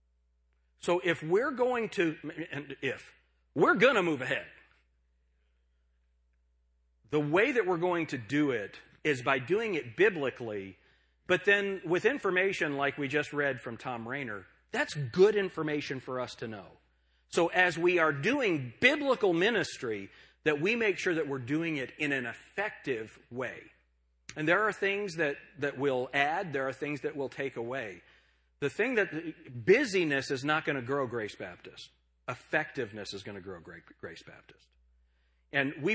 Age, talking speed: 40-59, 160 wpm